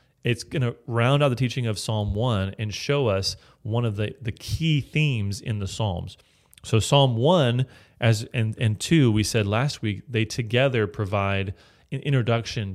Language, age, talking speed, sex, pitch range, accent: English, 30-49, 180 wpm, male, 100-120 Hz, American